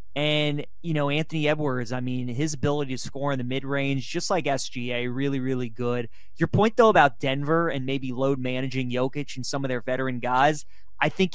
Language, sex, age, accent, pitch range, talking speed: English, male, 20-39, American, 130-155 Hz, 200 wpm